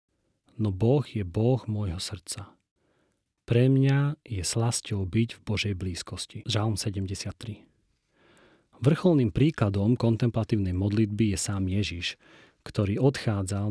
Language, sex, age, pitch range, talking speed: Slovak, male, 40-59, 100-125 Hz, 110 wpm